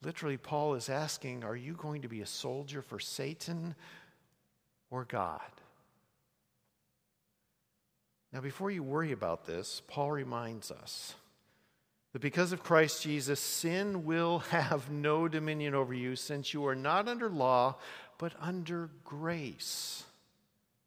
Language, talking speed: English, 130 wpm